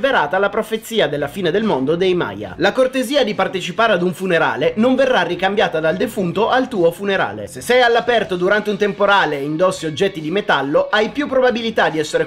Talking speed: 190 wpm